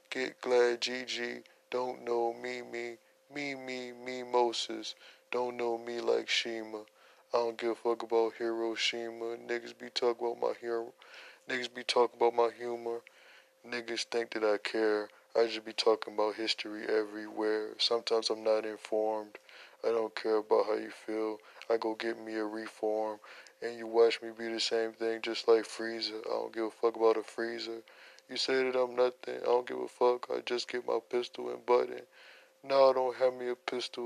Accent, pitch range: American, 110-125 Hz